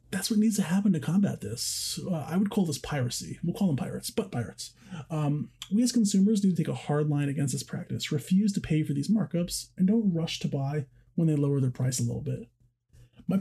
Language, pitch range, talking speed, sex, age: English, 130-185 Hz, 235 wpm, male, 30-49